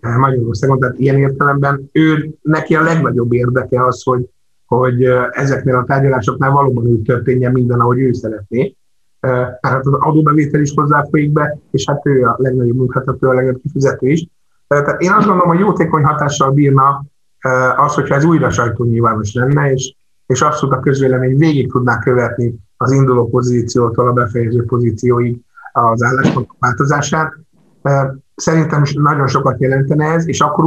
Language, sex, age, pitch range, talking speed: Hungarian, male, 50-69, 125-145 Hz, 145 wpm